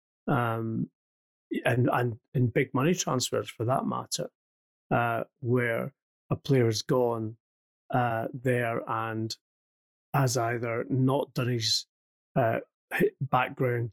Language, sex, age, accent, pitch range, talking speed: English, male, 30-49, British, 110-130 Hz, 110 wpm